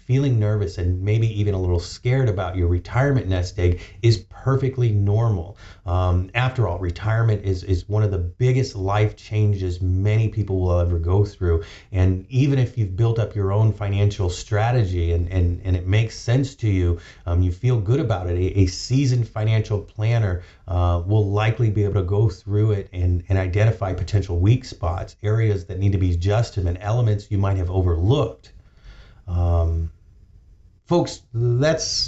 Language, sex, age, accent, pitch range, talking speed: English, male, 30-49, American, 90-110 Hz, 175 wpm